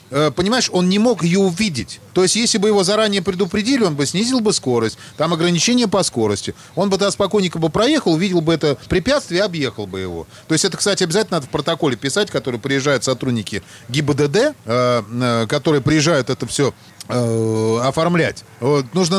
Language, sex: Russian, male